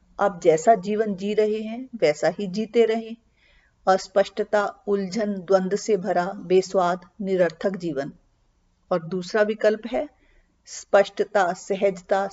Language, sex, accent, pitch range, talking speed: Hindi, female, native, 180-225 Hz, 115 wpm